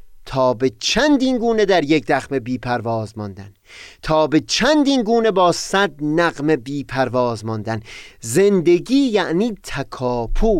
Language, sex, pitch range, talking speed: Persian, male, 125-195 Hz, 130 wpm